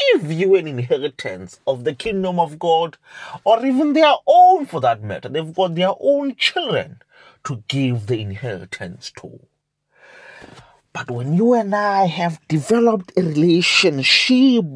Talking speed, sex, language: 140 wpm, male, English